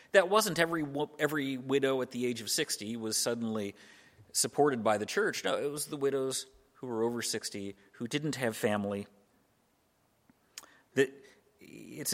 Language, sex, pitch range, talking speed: English, male, 105-140 Hz, 150 wpm